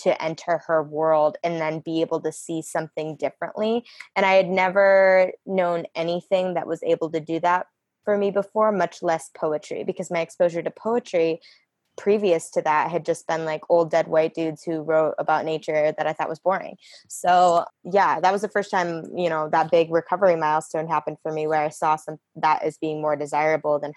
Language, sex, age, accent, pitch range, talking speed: English, female, 20-39, American, 160-180 Hz, 205 wpm